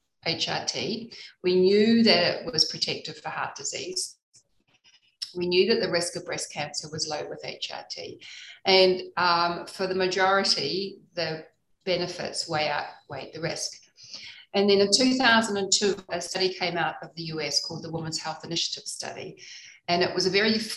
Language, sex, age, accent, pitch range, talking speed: English, female, 40-59, Australian, 165-200 Hz, 160 wpm